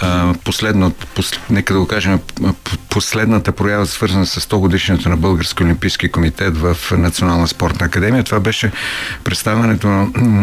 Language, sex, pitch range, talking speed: Bulgarian, male, 90-110 Hz, 130 wpm